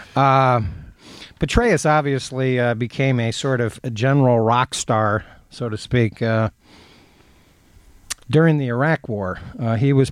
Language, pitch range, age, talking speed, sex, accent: English, 105-130 Hz, 50-69, 135 wpm, male, American